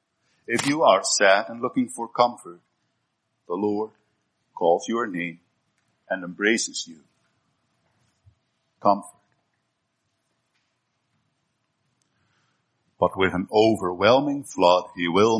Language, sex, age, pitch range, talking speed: English, male, 50-69, 100-135 Hz, 95 wpm